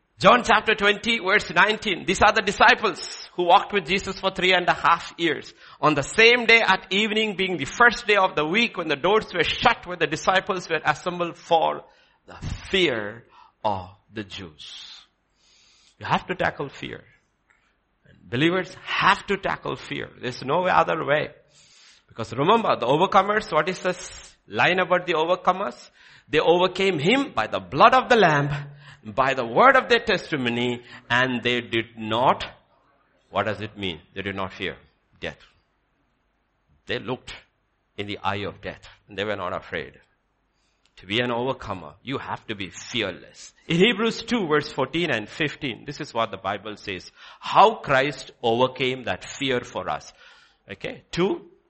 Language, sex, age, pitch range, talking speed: English, male, 60-79, 125-205 Hz, 165 wpm